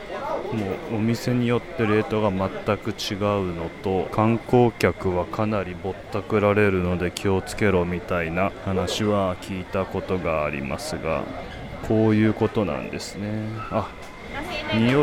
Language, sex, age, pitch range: Japanese, male, 20-39, 95-110 Hz